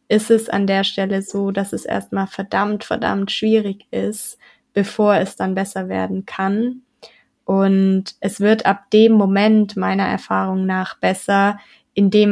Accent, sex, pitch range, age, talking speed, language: German, female, 190-215 Hz, 20-39, 145 wpm, German